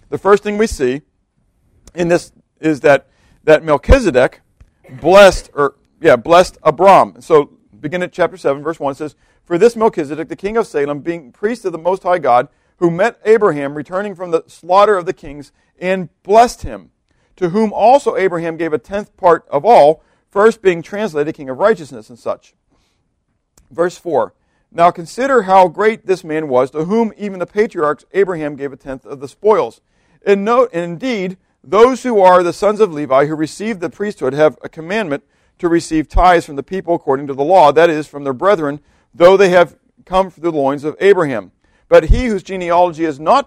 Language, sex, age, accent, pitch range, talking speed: English, male, 50-69, American, 150-205 Hz, 190 wpm